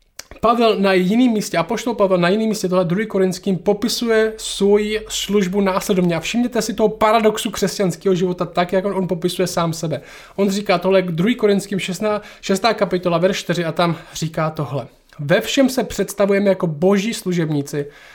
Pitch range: 175-210 Hz